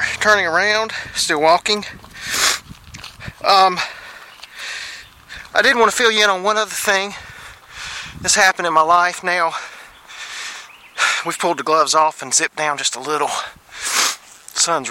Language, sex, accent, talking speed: English, male, American, 135 wpm